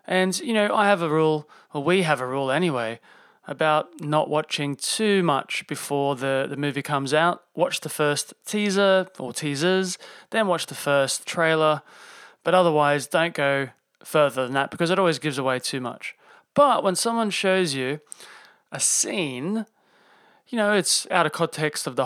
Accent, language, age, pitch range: Australian, English, 30-49, 140-175 Hz